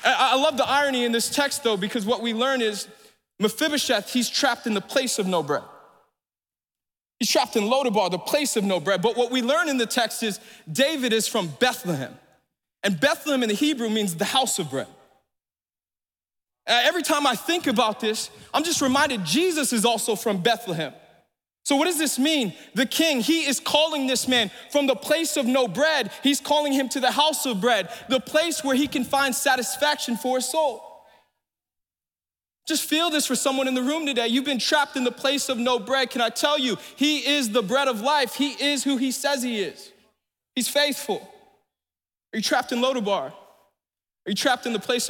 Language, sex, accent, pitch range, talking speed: English, male, American, 220-280 Hz, 200 wpm